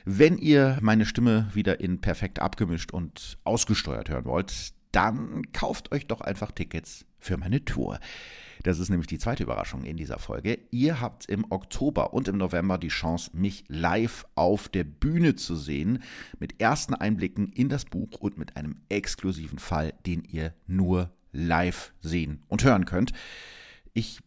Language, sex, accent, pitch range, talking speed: German, male, German, 85-110 Hz, 165 wpm